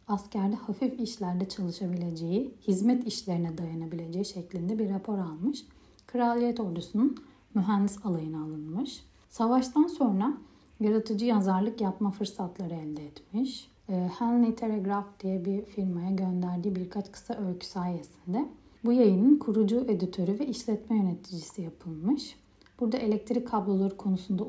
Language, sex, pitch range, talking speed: Turkish, female, 180-240 Hz, 115 wpm